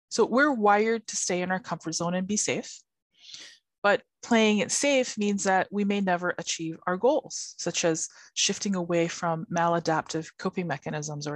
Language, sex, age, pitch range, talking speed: English, female, 20-39, 170-215 Hz, 175 wpm